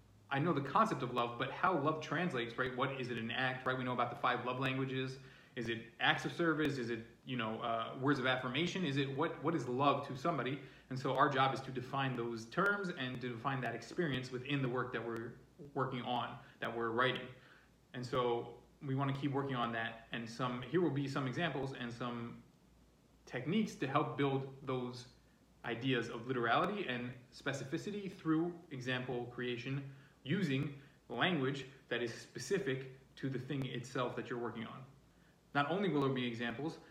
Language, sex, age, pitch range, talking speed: English, male, 30-49, 125-145 Hz, 190 wpm